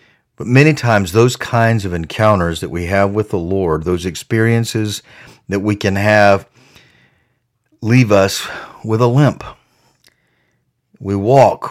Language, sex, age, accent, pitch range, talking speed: English, male, 50-69, American, 95-115 Hz, 135 wpm